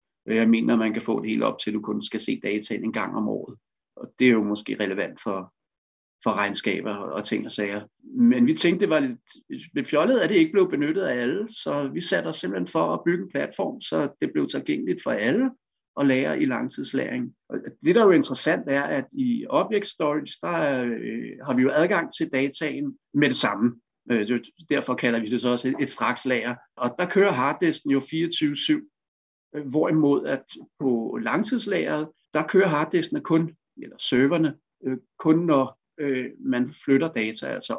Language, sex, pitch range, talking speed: Danish, male, 120-200 Hz, 195 wpm